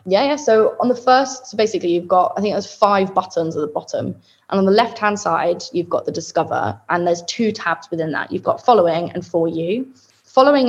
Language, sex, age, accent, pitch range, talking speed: English, female, 20-39, British, 170-210 Hz, 230 wpm